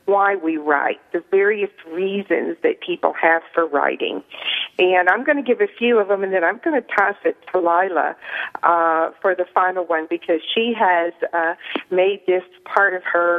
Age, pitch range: 50-69, 170-225 Hz